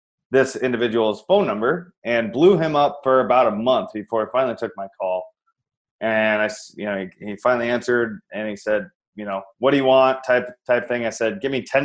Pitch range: 110-130 Hz